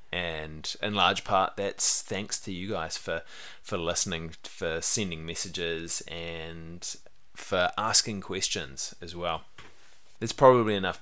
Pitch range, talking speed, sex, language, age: 85-110 Hz, 130 wpm, male, English, 20-39